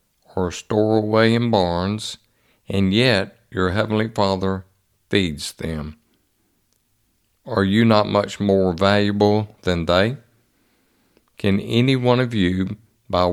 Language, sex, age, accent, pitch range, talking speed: English, male, 60-79, American, 95-115 Hz, 115 wpm